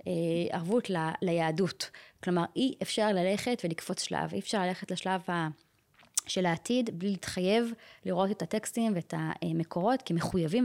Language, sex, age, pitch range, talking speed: Hebrew, female, 20-39, 175-225 Hz, 130 wpm